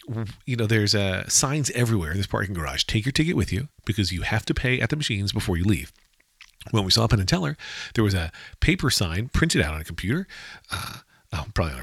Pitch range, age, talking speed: 95-125 Hz, 40-59, 225 wpm